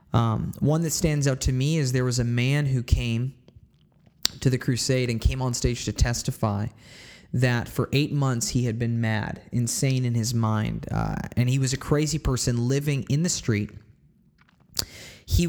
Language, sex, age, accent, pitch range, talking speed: English, male, 20-39, American, 115-155 Hz, 180 wpm